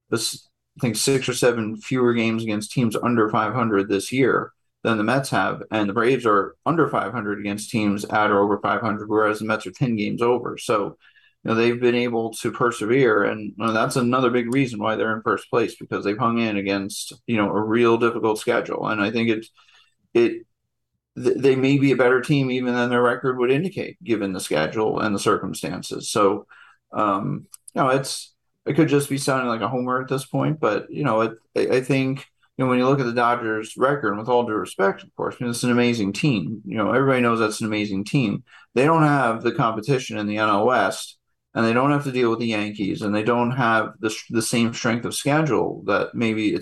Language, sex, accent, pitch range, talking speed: English, male, American, 110-130 Hz, 225 wpm